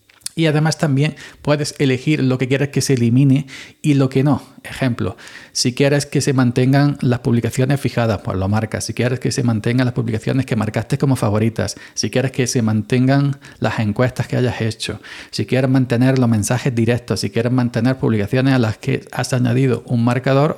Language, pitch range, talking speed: Spanish, 115-140 Hz, 190 wpm